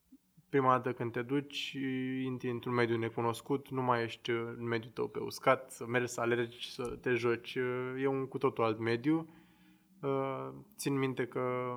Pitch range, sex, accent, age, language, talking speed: 120-140 Hz, male, native, 20-39, Romanian, 165 wpm